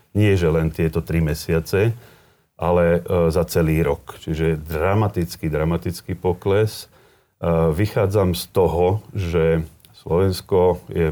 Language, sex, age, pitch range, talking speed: Slovak, male, 40-59, 85-95 Hz, 110 wpm